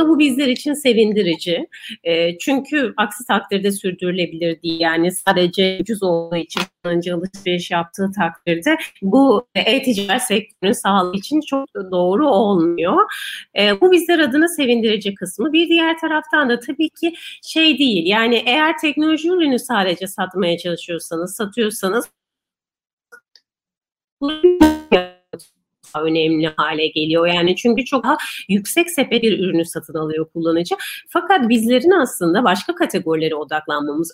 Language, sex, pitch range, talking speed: Turkish, female, 175-270 Hz, 120 wpm